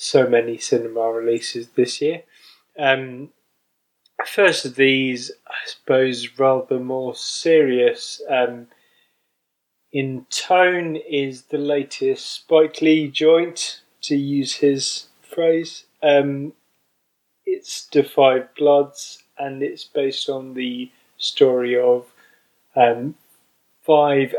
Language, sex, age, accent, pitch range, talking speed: English, male, 20-39, British, 120-155 Hz, 100 wpm